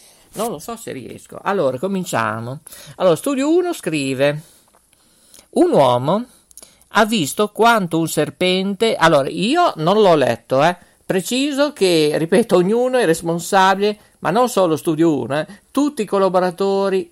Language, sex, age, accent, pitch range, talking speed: Italian, male, 50-69, native, 145-200 Hz, 135 wpm